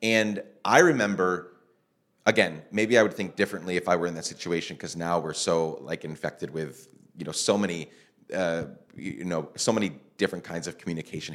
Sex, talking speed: male, 185 wpm